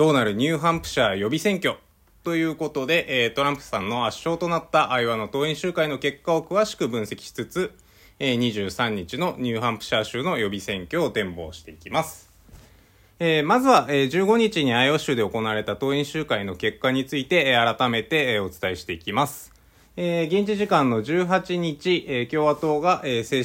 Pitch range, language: 110-165 Hz, Japanese